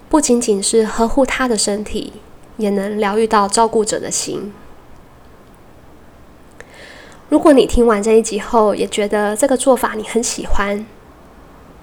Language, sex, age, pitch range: Chinese, female, 20-39, 200-235 Hz